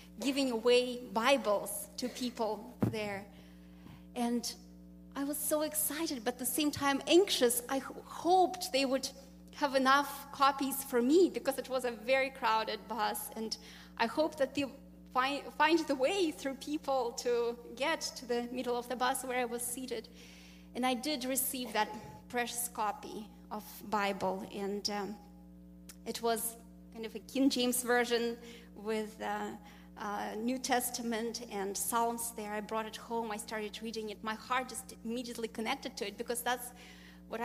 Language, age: English, 20-39